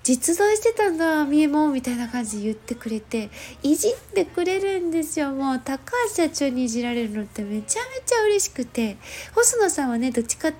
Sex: female